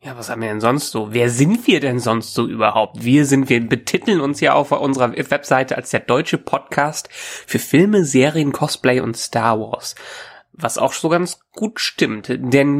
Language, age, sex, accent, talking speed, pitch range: German, 20-39, male, German, 190 wpm, 120-180 Hz